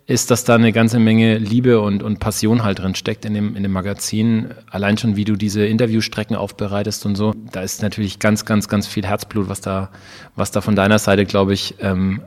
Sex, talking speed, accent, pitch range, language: male, 220 wpm, German, 105-125 Hz, German